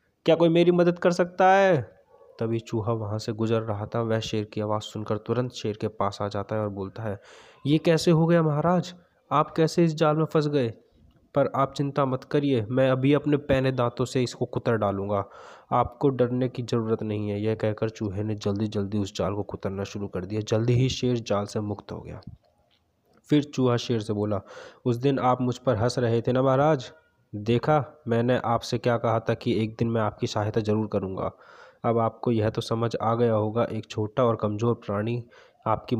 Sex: male